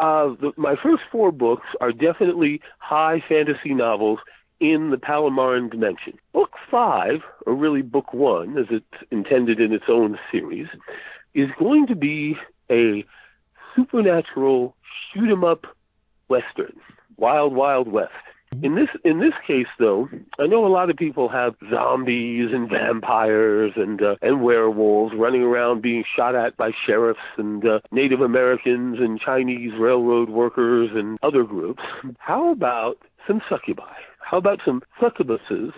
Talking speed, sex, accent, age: 145 wpm, male, American, 50-69